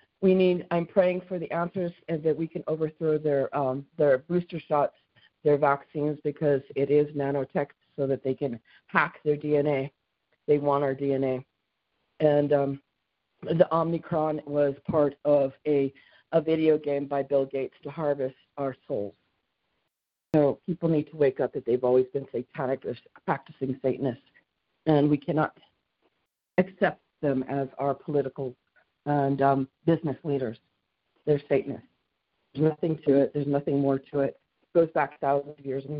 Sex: female